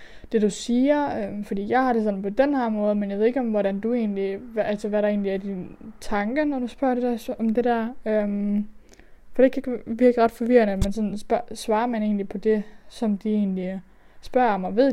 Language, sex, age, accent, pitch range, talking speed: Danish, female, 20-39, native, 200-230 Hz, 240 wpm